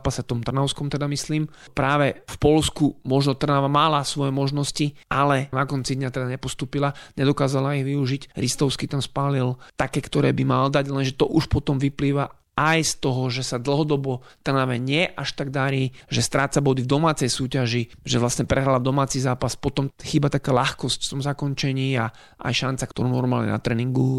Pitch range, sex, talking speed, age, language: 125-145 Hz, male, 180 wpm, 30-49, Slovak